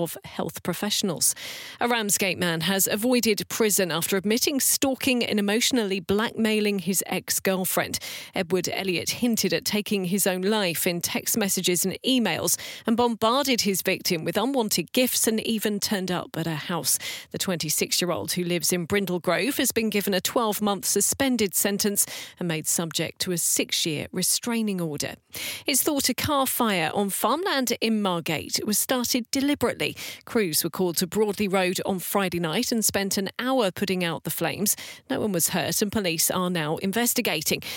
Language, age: English, 40-59